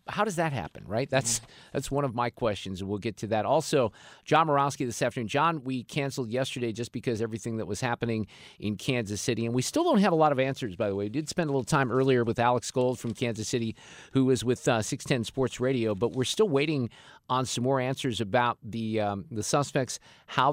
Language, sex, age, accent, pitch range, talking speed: English, male, 50-69, American, 110-140 Hz, 235 wpm